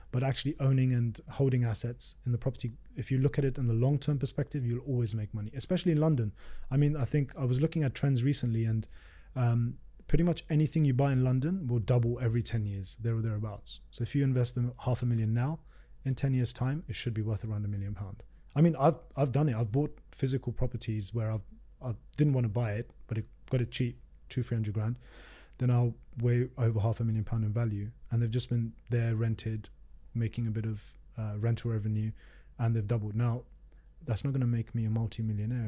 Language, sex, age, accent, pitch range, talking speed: English, male, 20-39, British, 110-125 Hz, 225 wpm